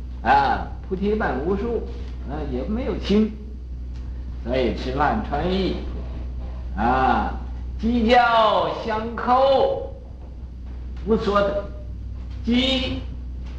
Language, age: Chinese, 50-69